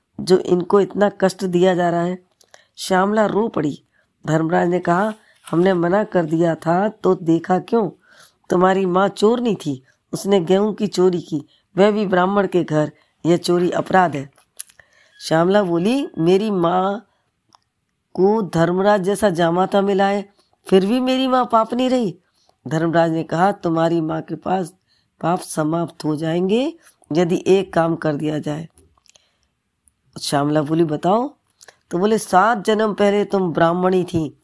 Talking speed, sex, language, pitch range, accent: 150 wpm, female, Hindi, 165-195 Hz, native